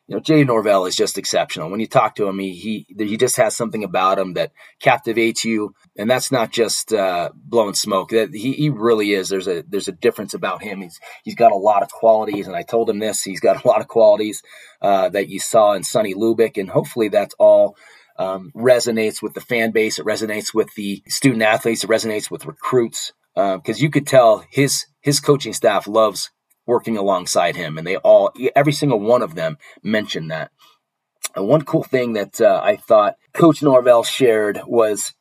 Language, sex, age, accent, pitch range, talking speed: English, male, 30-49, American, 105-140 Hz, 210 wpm